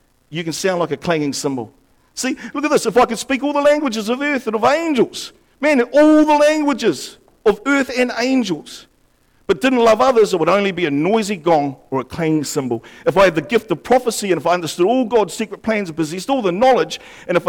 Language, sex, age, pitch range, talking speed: English, male, 50-69, 155-235 Hz, 235 wpm